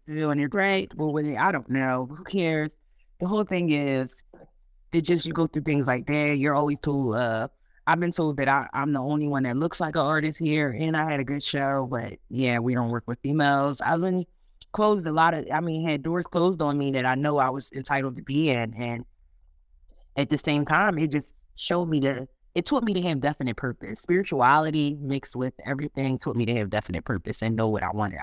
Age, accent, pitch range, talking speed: 20-39, American, 125-155 Hz, 230 wpm